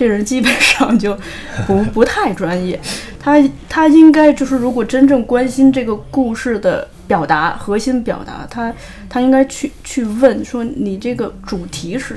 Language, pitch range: Chinese, 195-255 Hz